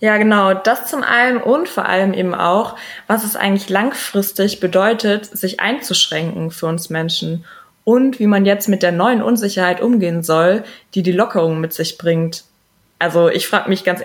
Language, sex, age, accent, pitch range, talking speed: German, female, 20-39, German, 185-235 Hz, 175 wpm